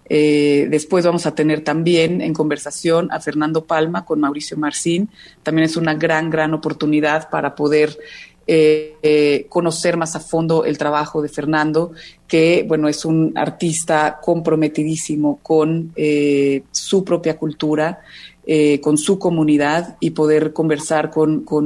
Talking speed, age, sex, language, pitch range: 140 wpm, 30-49, female, Spanish, 145-160 Hz